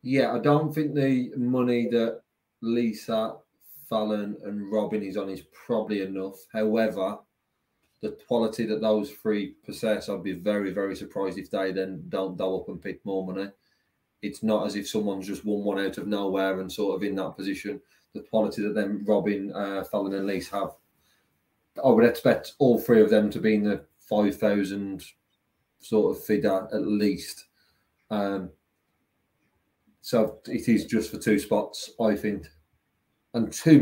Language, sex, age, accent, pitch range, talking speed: English, male, 20-39, British, 100-115 Hz, 170 wpm